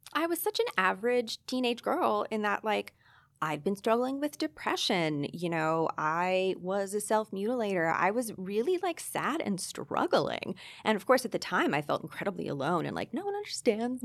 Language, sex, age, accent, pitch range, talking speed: English, female, 20-39, American, 160-230 Hz, 185 wpm